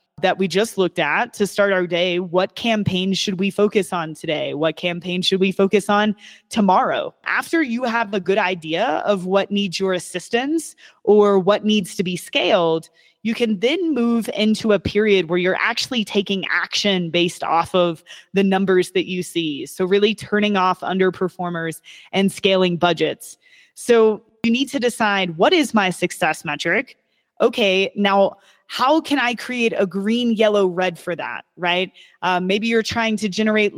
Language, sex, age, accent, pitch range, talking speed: English, female, 20-39, American, 180-225 Hz, 170 wpm